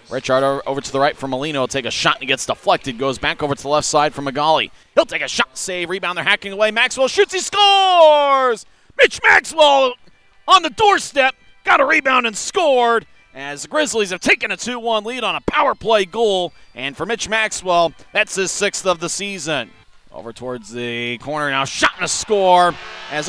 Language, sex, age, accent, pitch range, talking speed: English, male, 30-49, American, 140-200 Hz, 205 wpm